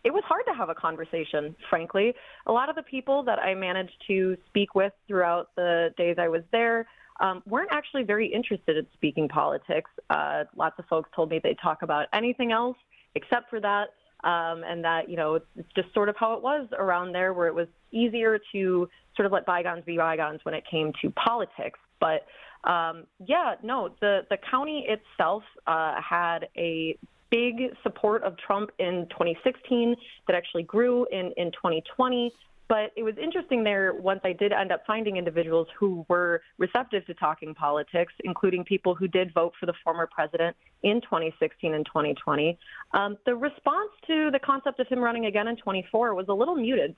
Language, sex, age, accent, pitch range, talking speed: English, female, 20-39, American, 170-220 Hz, 190 wpm